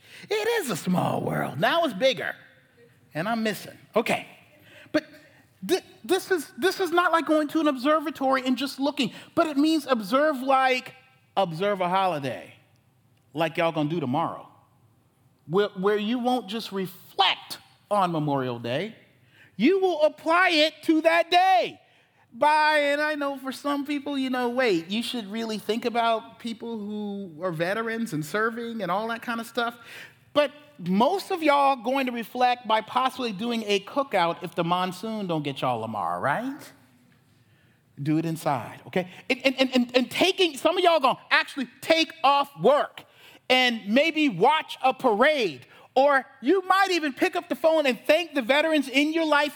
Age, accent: 40-59, American